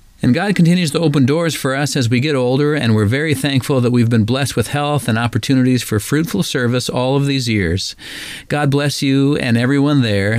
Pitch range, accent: 115-145 Hz, American